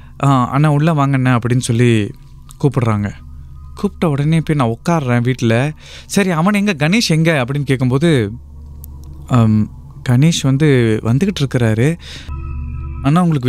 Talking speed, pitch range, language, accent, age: 110 wpm, 110-155 Hz, Tamil, native, 20-39